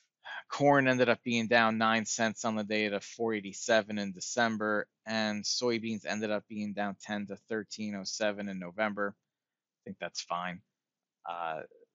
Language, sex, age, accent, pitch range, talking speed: English, male, 30-49, American, 115-150 Hz, 150 wpm